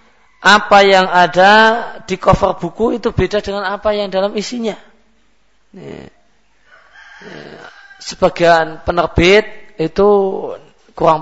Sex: male